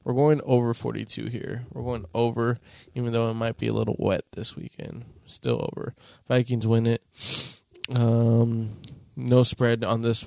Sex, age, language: male, 20-39, English